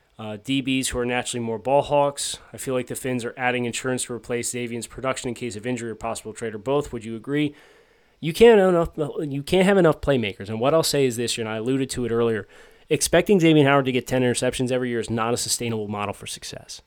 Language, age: English, 20-39